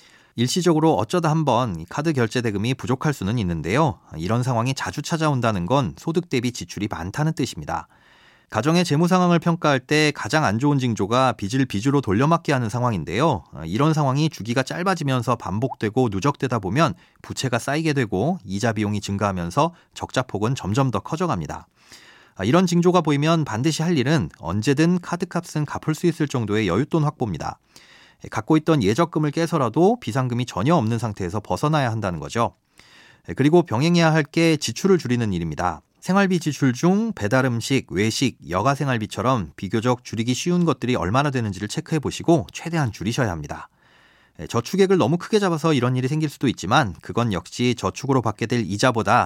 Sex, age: male, 30-49